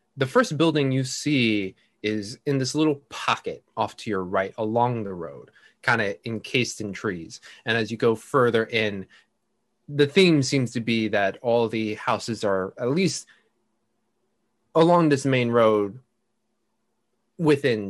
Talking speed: 150 wpm